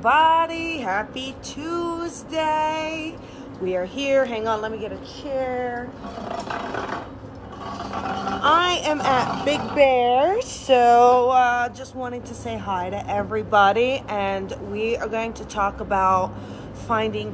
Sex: female